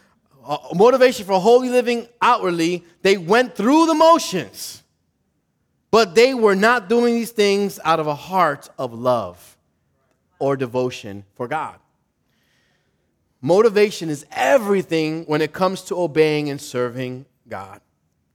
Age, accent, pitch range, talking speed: 20-39, American, 125-210 Hz, 130 wpm